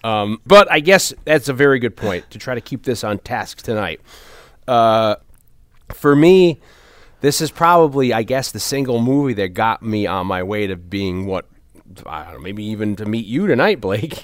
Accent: American